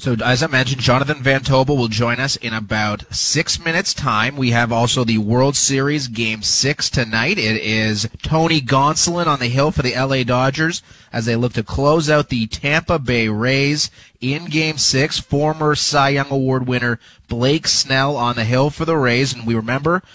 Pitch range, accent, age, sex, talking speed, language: 115-140 Hz, American, 30-49, male, 190 wpm, English